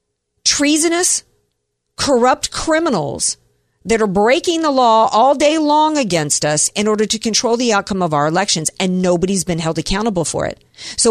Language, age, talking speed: English, 50-69, 160 wpm